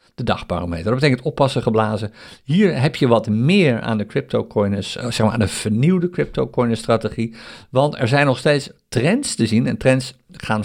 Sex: male